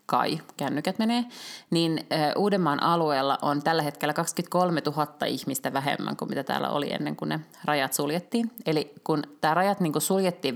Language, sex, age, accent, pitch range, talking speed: Finnish, female, 30-49, native, 145-175 Hz, 165 wpm